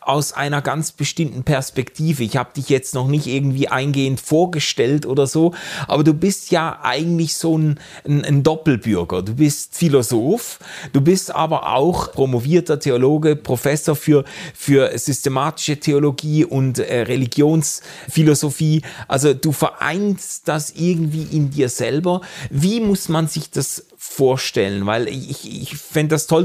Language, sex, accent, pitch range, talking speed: German, male, German, 140-165 Hz, 145 wpm